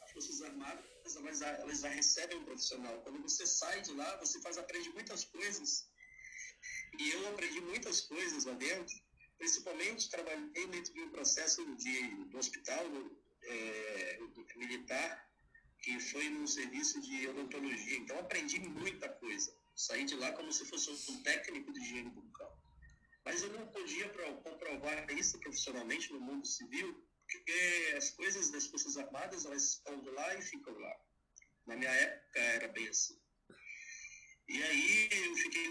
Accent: Brazilian